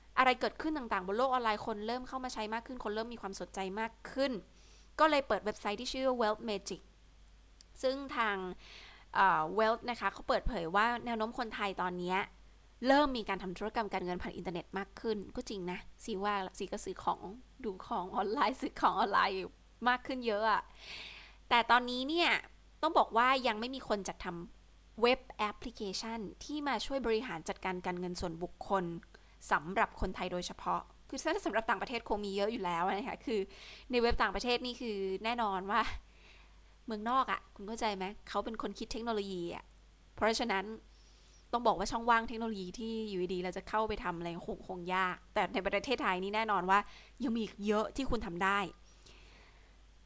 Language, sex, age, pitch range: Thai, female, 20-39, 195-245 Hz